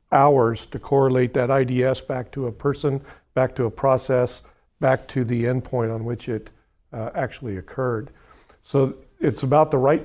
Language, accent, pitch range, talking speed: English, American, 130-150 Hz, 165 wpm